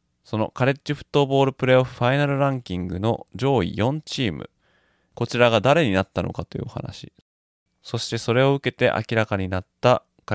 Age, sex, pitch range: 20-39, male, 95-130 Hz